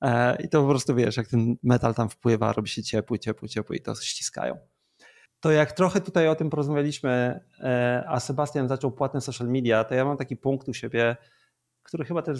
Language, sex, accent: Polish, male, native